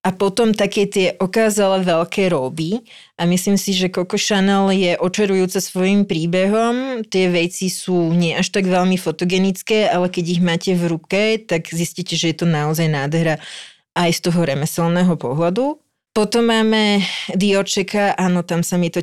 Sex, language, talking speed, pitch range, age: female, Slovak, 160 wpm, 170-195 Hz, 30-49